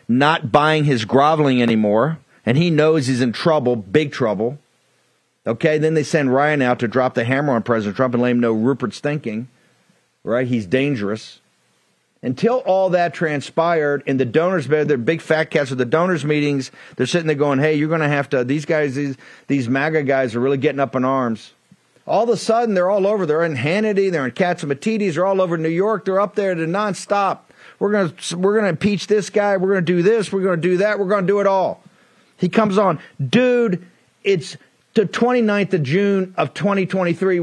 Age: 40-59